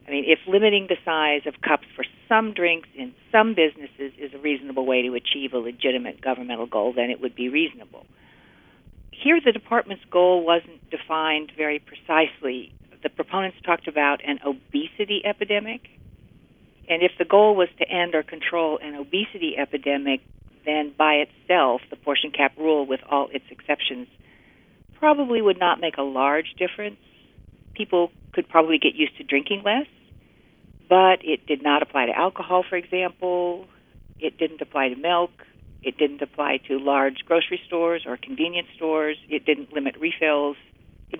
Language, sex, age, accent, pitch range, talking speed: English, female, 50-69, American, 140-175 Hz, 160 wpm